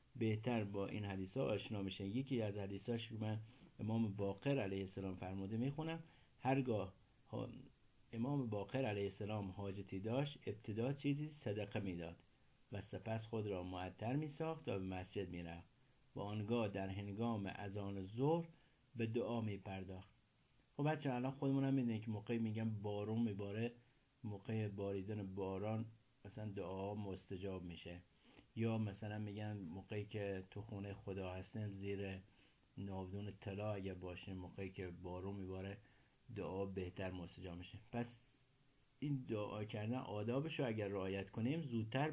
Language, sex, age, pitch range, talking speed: Persian, male, 50-69, 100-130 Hz, 140 wpm